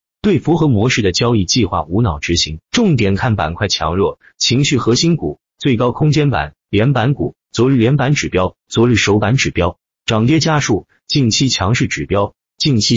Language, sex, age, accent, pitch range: Chinese, male, 30-49, native, 90-125 Hz